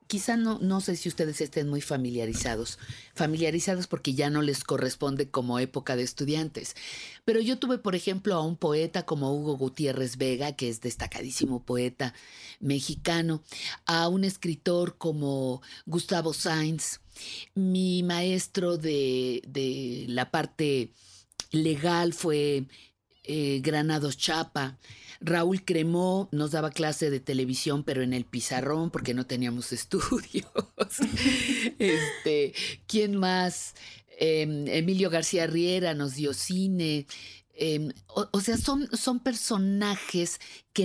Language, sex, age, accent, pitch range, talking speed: Spanish, female, 40-59, Mexican, 135-175 Hz, 125 wpm